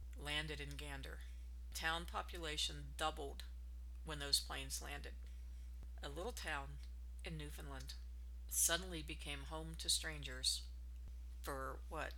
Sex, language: female, English